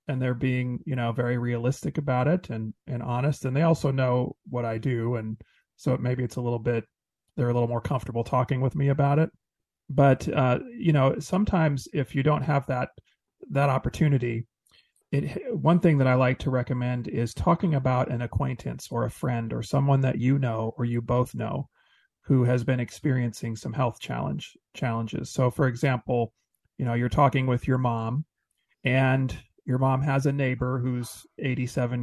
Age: 40-59